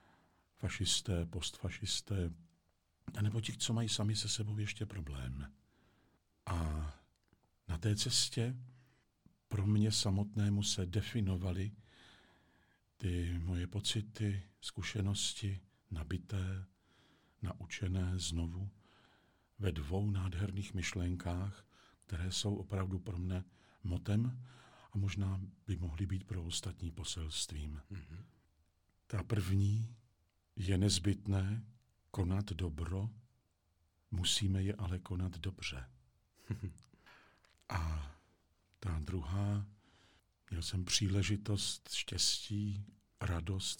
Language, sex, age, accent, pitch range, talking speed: Czech, male, 50-69, native, 85-105 Hz, 90 wpm